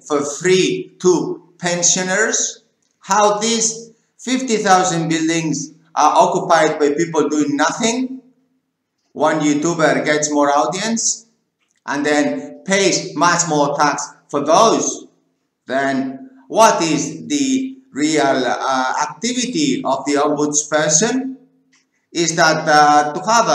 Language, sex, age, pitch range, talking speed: English, male, 50-69, 150-215 Hz, 110 wpm